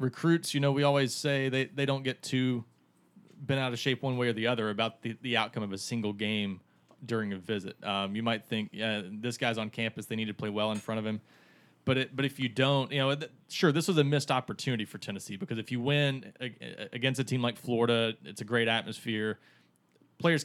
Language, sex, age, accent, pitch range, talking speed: English, male, 20-39, American, 110-130 Hz, 230 wpm